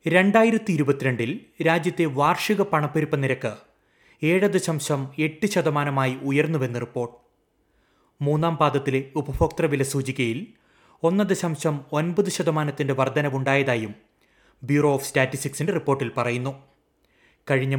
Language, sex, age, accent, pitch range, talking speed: Malayalam, male, 30-49, native, 135-160 Hz, 95 wpm